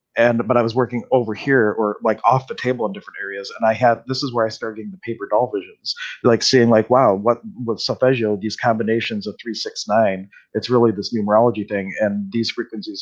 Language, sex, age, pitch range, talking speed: English, male, 40-59, 100-120 Hz, 225 wpm